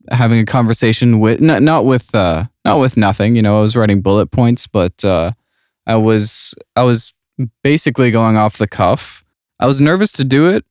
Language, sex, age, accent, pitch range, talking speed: English, male, 20-39, American, 100-125 Hz, 195 wpm